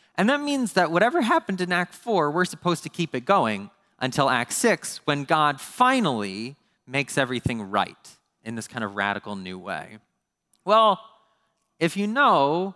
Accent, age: American, 30-49